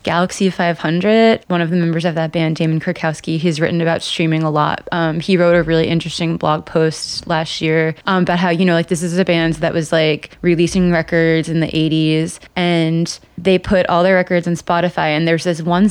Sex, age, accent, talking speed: female, 20-39, American, 215 wpm